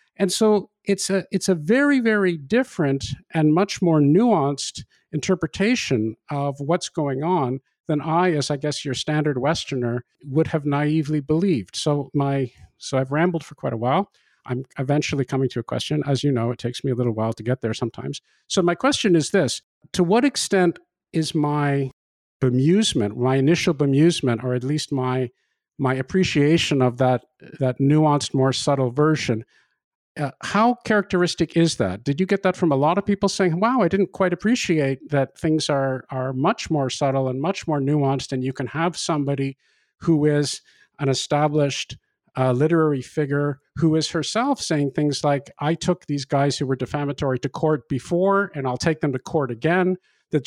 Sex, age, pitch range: male, 50-69, 135-175 Hz